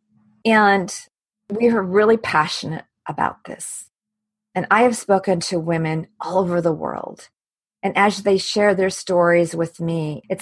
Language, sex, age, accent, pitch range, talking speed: English, female, 40-59, American, 180-215 Hz, 150 wpm